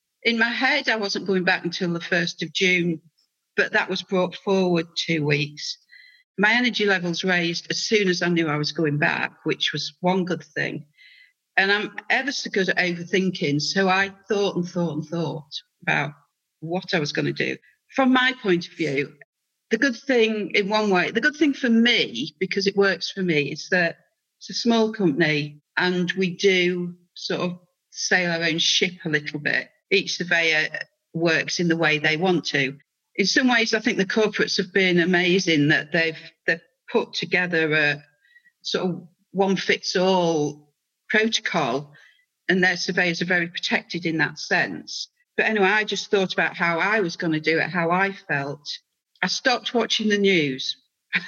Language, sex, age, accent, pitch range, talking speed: English, female, 50-69, British, 165-205 Hz, 185 wpm